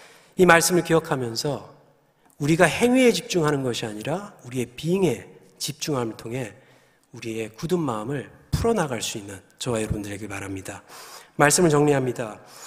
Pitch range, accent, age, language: 120-170 Hz, native, 40-59, Korean